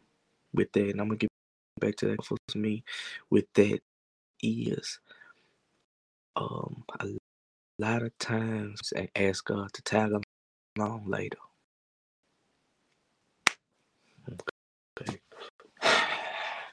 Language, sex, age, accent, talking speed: English, male, 20-39, American, 95 wpm